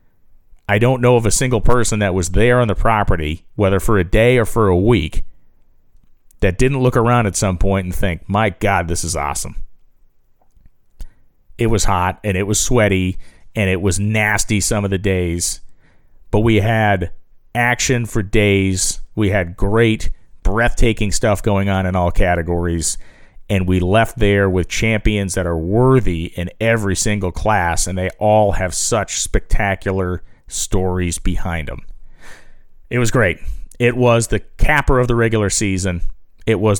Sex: male